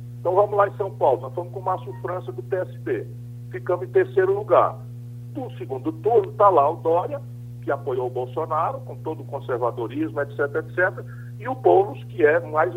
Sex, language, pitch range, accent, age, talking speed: male, Portuguese, 120-155 Hz, Brazilian, 60-79, 190 wpm